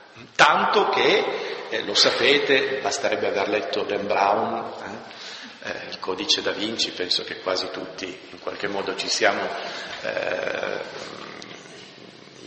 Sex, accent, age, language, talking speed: male, native, 50-69, Italian, 125 wpm